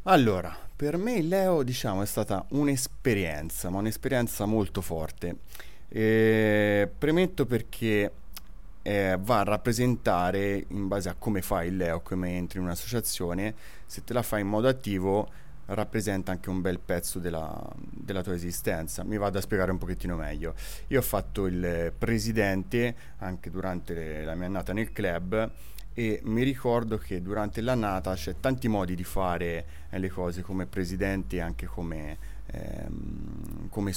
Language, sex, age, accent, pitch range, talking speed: Italian, male, 30-49, native, 90-110 Hz, 150 wpm